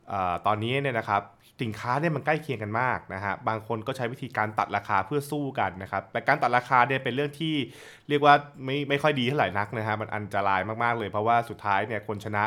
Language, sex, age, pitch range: Thai, male, 20-39, 105-145 Hz